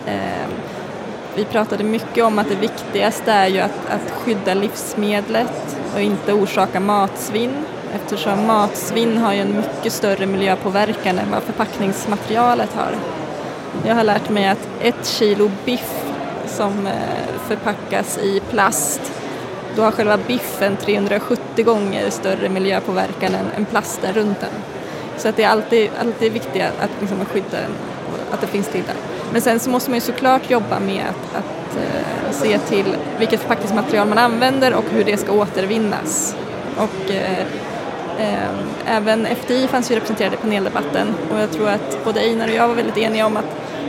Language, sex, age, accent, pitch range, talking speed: Swedish, female, 20-39, native, 205-230 Hz, 160 wpm